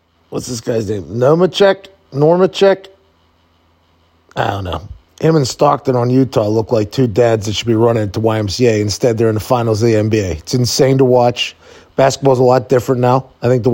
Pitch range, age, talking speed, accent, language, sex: 100-145 Hz, 30-49, 190 wpm, American, English, male